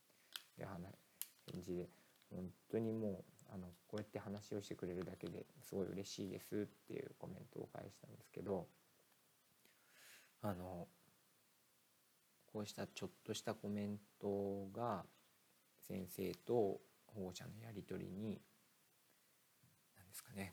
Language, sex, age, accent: Japanese, male, 40-59, native